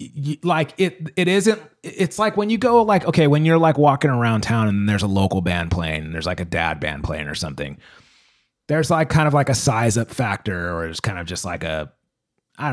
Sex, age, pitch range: male, 30-49, 100-155 Hz